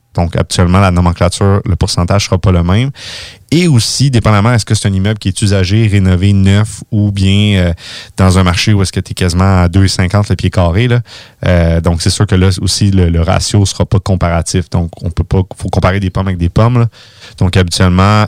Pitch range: 90-110 Hz